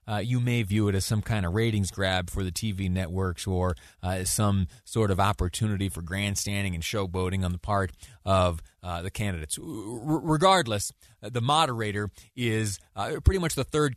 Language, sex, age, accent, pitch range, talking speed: English, male, 30-49, American, 95-130 Hz, 175 wpm